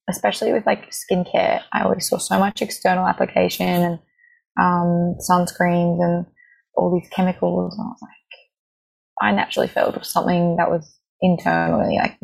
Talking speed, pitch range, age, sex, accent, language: 155 wpm, 175-210 Hz, 20-39, female, Australian, English